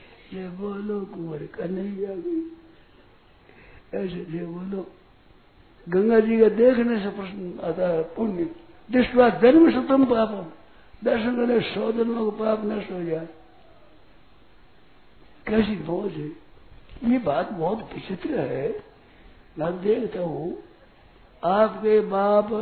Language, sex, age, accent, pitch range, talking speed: Hindi, male, 60-79, native, 180-220 Hz, 105 wpm